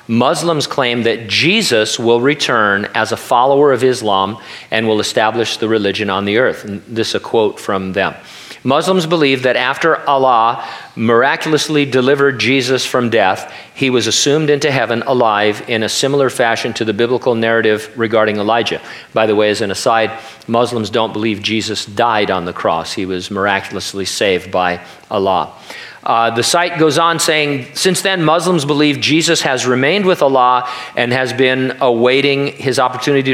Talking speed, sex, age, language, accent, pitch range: 165 wpm, male, 40-59, English, American, 110-145 Hz